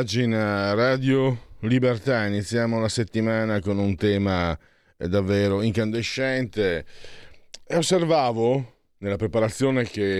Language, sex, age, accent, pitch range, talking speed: Italian, male, 50-69, native, 95-120 Hz, 95 wpm